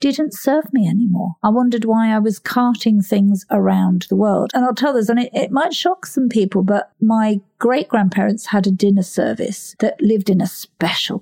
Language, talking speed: English, 205 wpm